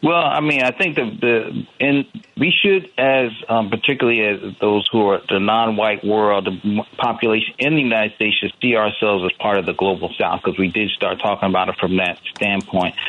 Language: English